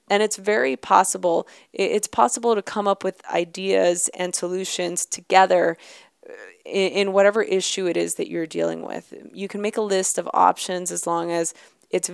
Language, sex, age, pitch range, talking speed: English, female, 20-39, 175-210 Hz, 170 wpm